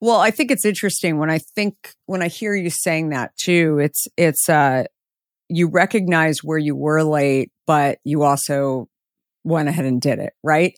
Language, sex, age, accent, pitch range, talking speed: English, female, 50-69, American, 145-175 Hz, 185 wpm